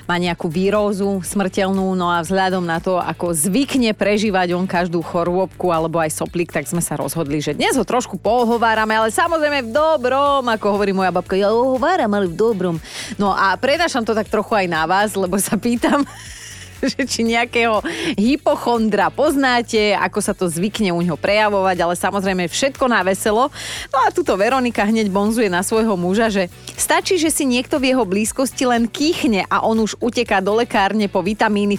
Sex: female